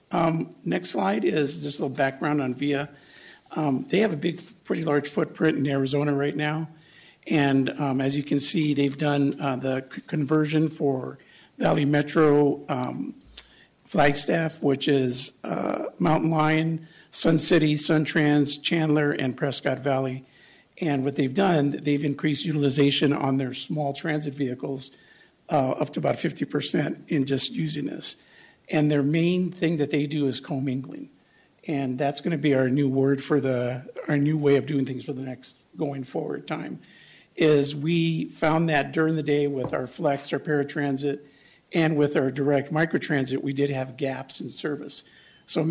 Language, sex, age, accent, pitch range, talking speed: English, male, 50-69, American, 140-155 Hz, 170 wpm